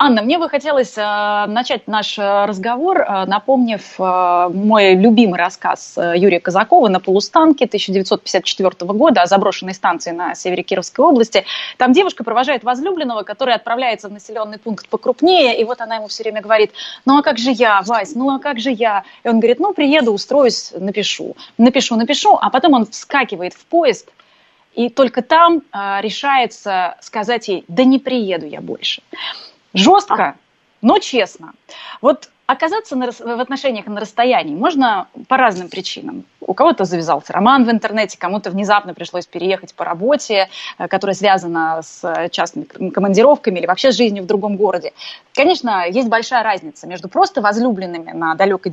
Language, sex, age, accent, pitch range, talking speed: Russian, female, 20-39, native, 195-265 Hz, 155 wpm